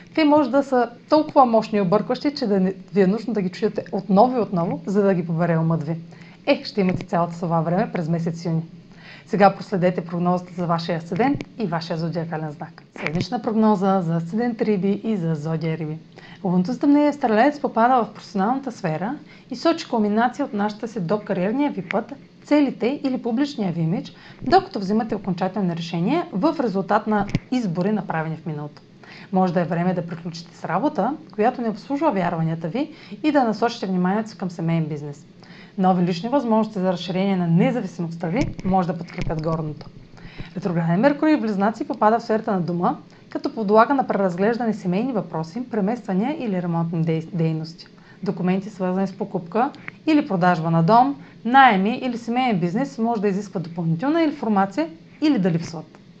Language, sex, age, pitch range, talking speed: Bulgarian, female, 30-49, 175-235 Hz, 165 wpm